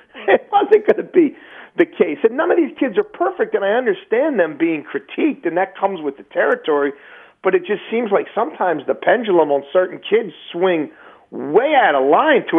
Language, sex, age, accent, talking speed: English, male, 40-59, American, 205 wpm